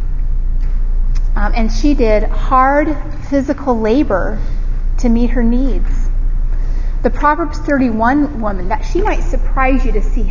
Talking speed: 130 wpm